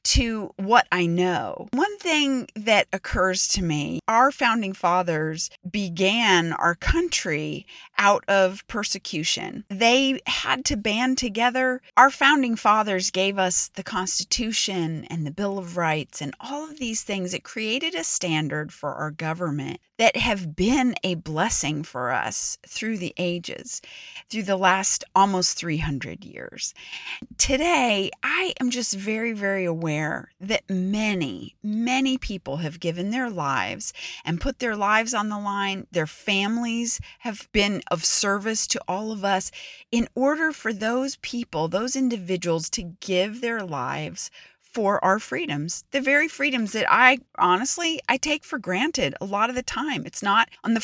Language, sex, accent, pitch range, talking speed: English, female, American, 180-245 Hz, 150 wpm